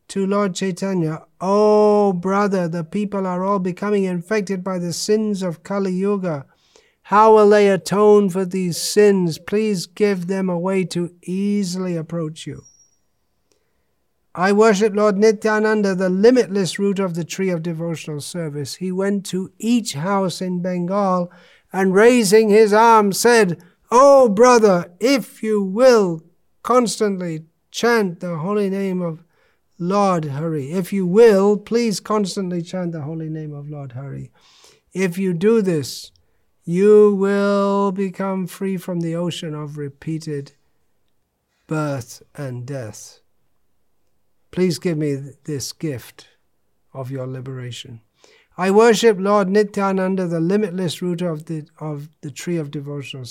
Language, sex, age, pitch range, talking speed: English, male, 50-69, 165-205 Hz, 140 wpm